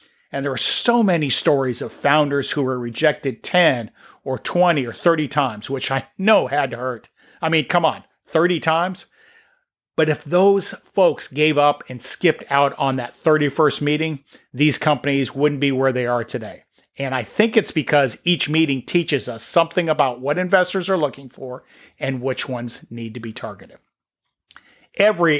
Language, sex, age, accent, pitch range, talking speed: English, male, 40-59, American, 130-165 Hz, 175 wpm